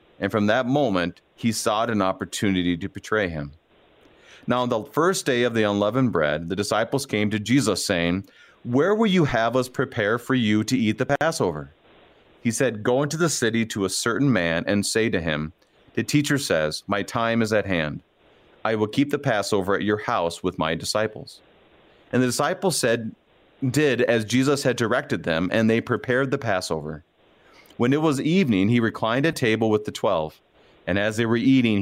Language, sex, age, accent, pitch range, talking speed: English, male, 30-49, American, 100-125 Hz, 190 wpm